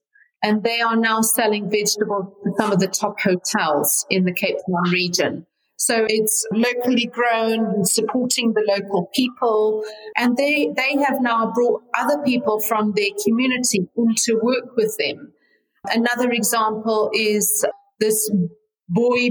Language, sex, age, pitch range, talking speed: English, female, 40-59, 200-245 Hz, 145 wpm